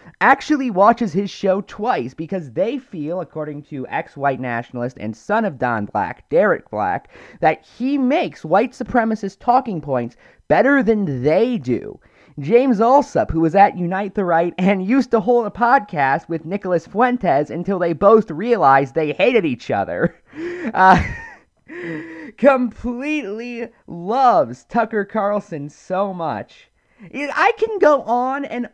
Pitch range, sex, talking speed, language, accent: 160-245 Hz, male, 140 wpm, English, American